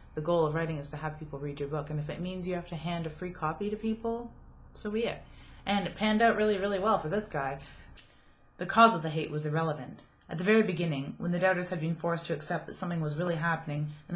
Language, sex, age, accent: English, female, 30-49, American